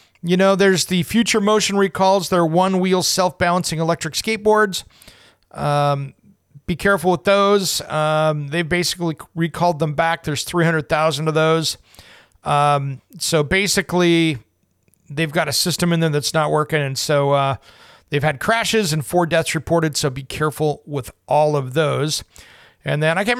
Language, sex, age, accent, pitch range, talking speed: English, male, 40-59, American, 150-185 Hz, 155 wpm